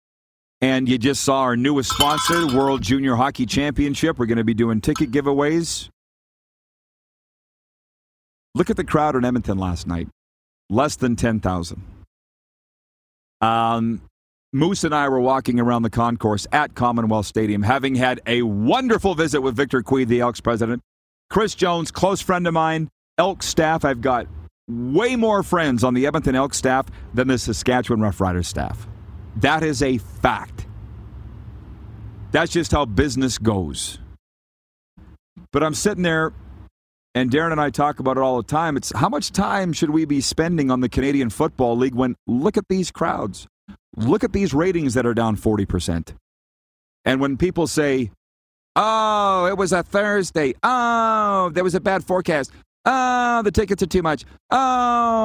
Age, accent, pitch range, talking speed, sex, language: 40-59, American, 110-165 Hz, 160 wpm, male, English